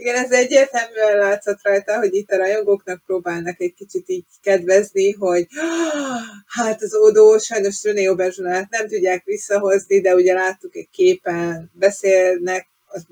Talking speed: 135 wpm